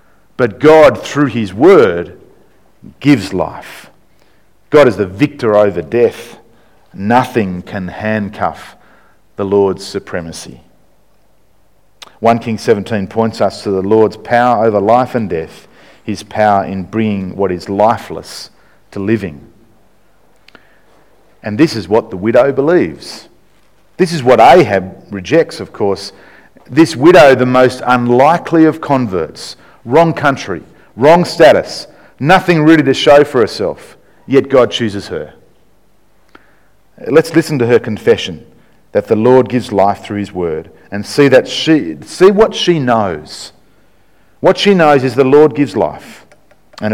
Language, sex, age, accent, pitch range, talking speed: English, male, 50-69, Australian, 100-145 Hz, 135 wpm